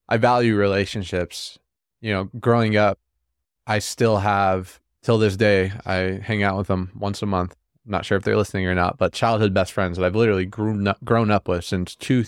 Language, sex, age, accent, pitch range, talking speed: English, male, 20-39, American, 95-110 Hz, 195 wpm